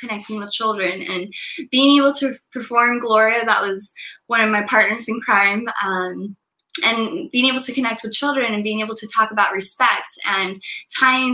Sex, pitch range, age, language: female, 200-250 Hz, 10-29, English